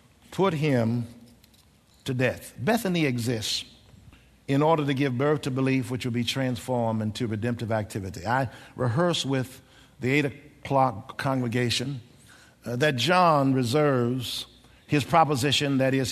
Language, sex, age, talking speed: English, male, 50-69, 130 wpm